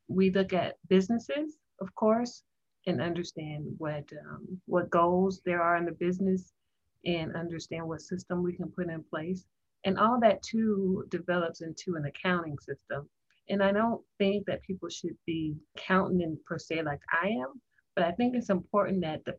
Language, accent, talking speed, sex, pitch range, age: English, American, 175 wpm, female, 165-195 Hz, 30-49